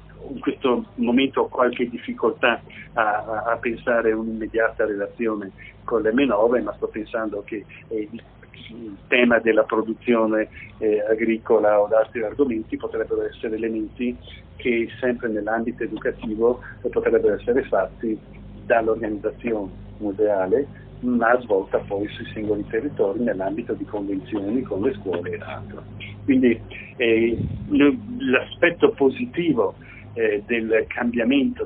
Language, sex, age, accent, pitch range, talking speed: Italian, male, 40-59, native, 110-130 Hz, 120 wpm